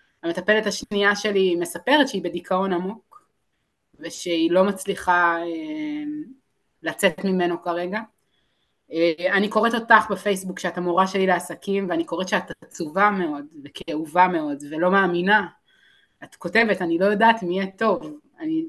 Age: 20-39